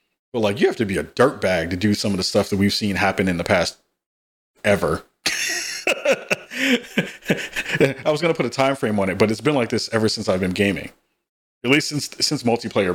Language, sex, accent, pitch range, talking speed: English, male, American, 100-120 Hz, 215 wpm